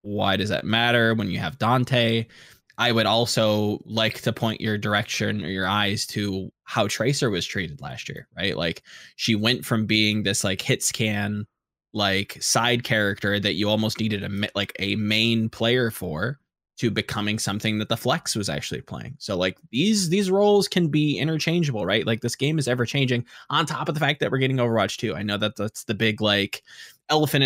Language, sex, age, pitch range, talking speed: English, male, 20-39, 105-130 Hz, 200 wpm